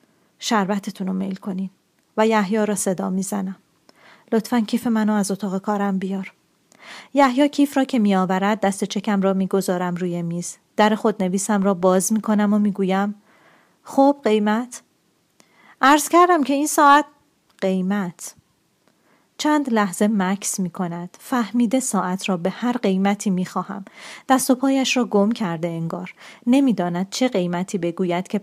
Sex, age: female, 30-49